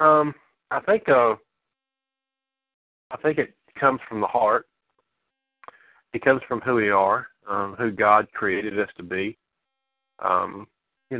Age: 40-59